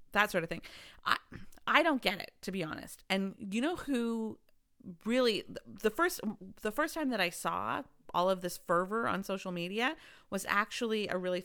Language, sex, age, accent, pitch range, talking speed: English, female, 40-59, American, 175-225 Hz, 190 wpm